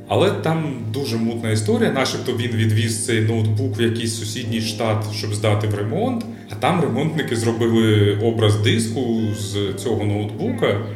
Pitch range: 110-135 Hz